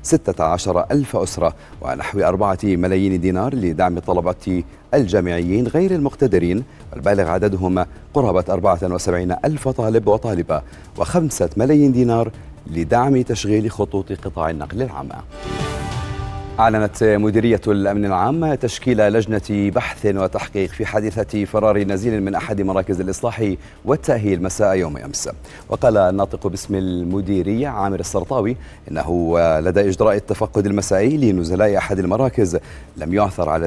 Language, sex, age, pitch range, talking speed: Arabic, male, 40-59, 95-115 Hz, 115 wpm